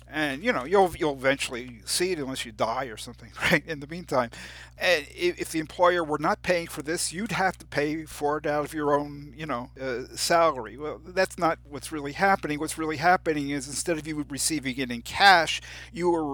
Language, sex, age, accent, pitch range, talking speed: English, male, 50-69, American, 130-165 Hz, 215 wpm